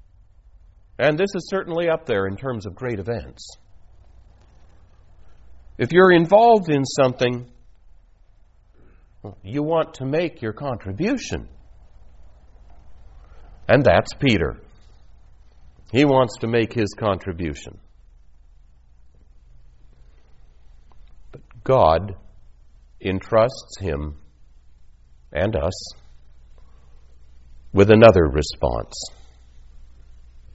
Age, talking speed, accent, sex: 60-79, 80 wpm, American, male